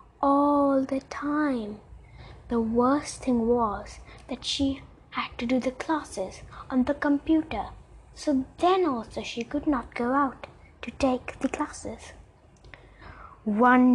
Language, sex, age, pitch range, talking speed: English, female, 20-39, 230-300 Hz, 130 wpm